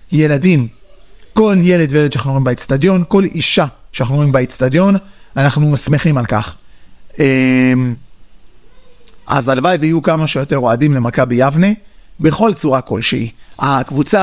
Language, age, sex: Hebrew, 30-49, male